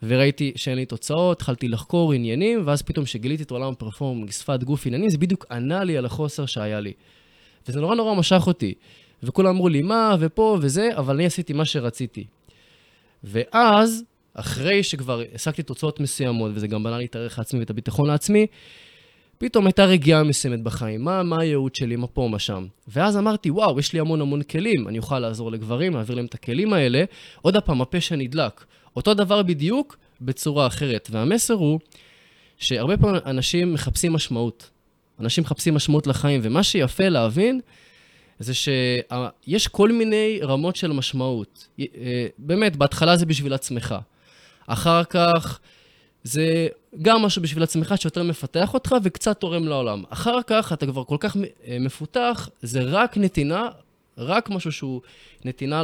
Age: 20-39